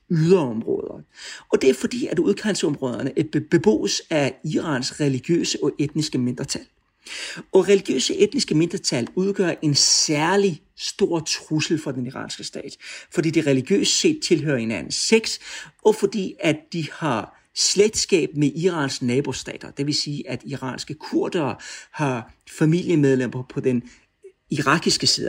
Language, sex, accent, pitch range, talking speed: Danish, male, native, 140-195 Hz, 135 wpm